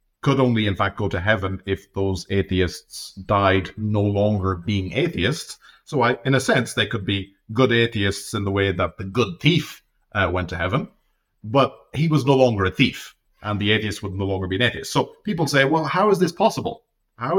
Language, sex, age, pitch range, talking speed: English, male, 40-59, 95-130 Hz, 205 wpm